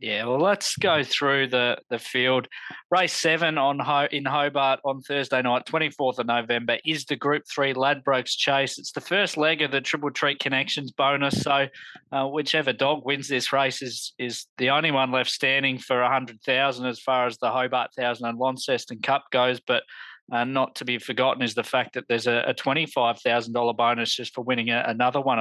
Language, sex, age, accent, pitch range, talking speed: English, male, 20-39, Australian, 125-140 Hz, 195 wpm